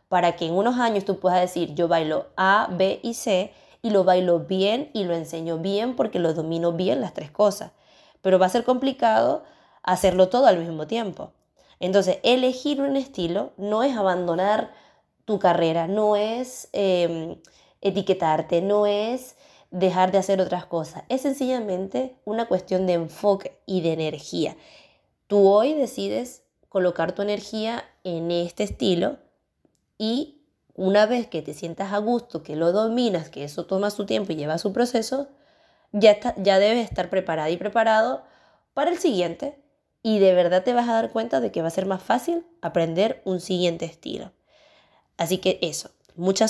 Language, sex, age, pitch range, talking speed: Spanish, female, 20-39, 175-230 Hz, 170 wpm